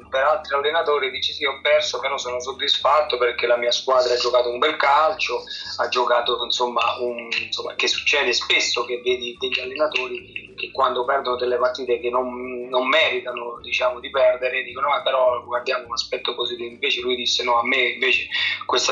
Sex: male